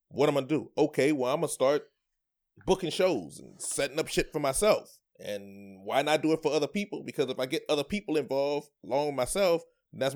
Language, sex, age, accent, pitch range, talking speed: English, male, 30-49, American, 140-165 Hz, 230 wpm